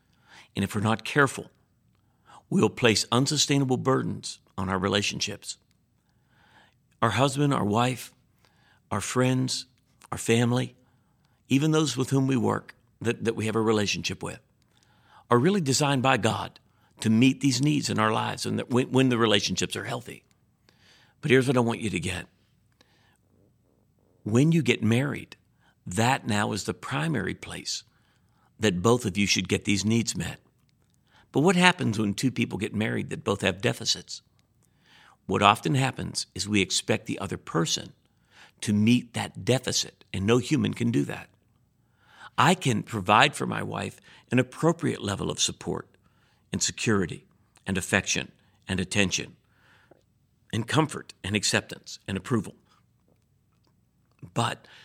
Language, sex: English, male